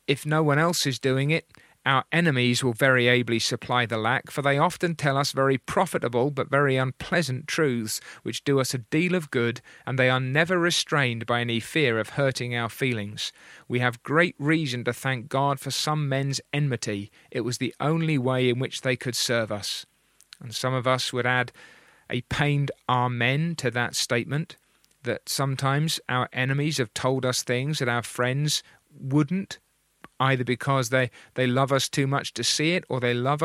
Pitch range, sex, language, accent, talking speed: 125-150 Hz, male, English, British, 190 wpm